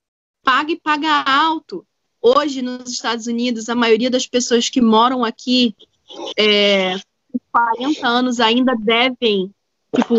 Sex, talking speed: female, 125 wpm